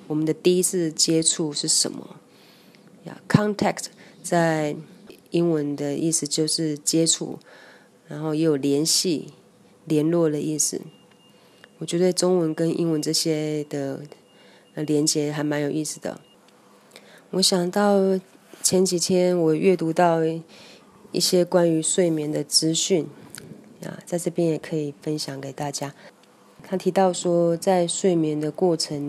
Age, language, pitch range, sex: 20-39, Chinese, 145-175 Hz, female